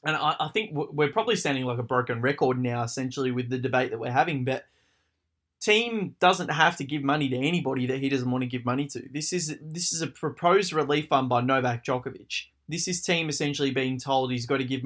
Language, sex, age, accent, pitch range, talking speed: English, male, 20-39, Australian, 130-160 Hz, 225 wpm